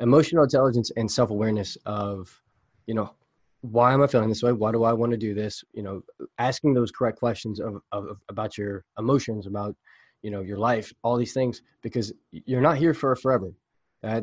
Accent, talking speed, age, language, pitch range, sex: American, 200 wpm, 20-39, English, 100-120 Hz, male